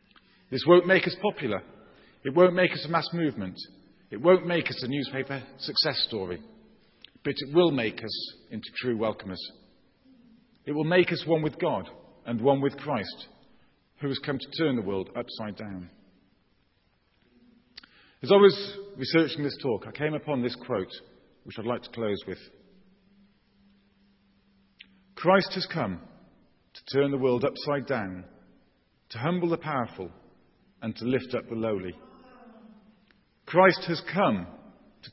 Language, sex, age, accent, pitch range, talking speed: English, male, 40-59, British, 120-180 Hz, 150 wpm